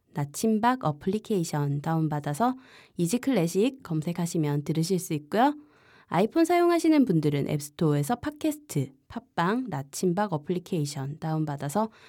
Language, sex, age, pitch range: Korean, female, 20-39, 150-230 Hz